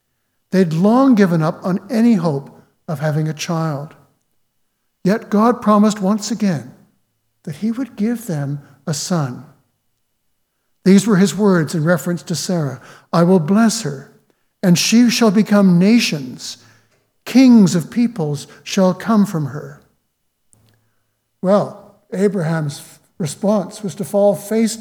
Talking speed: 130 wpm